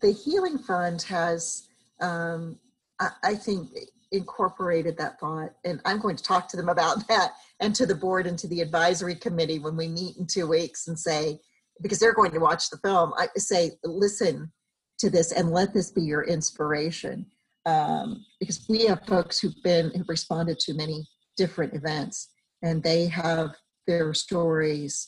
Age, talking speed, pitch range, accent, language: 50-69, 175 wpm, 165-210 Hz, American, English